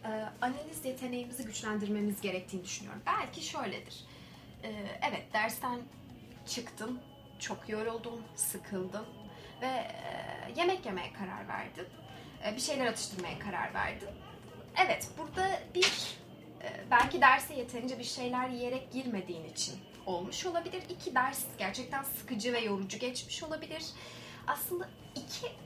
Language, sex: Turkish, female